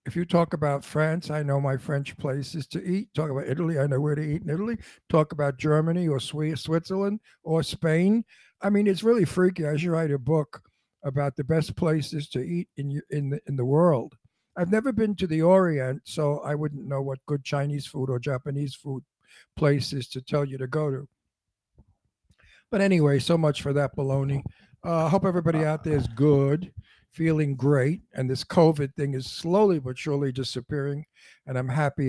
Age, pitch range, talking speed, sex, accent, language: 60-79, 140-165 Hz, 190 wpm, male, American, English